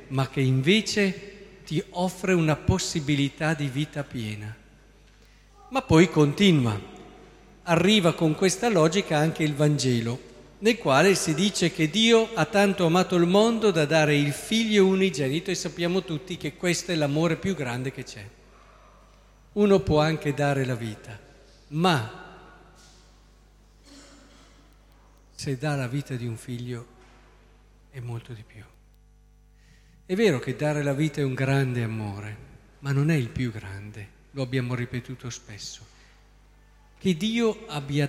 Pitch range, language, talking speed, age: 135-200 Hz, Italian, 140 wpm, 50-69